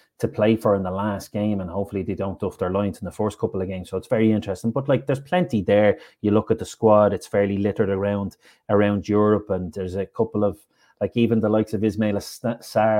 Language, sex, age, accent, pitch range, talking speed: English, male, 30-49, Irish, 100-120 Hz, 240 wpm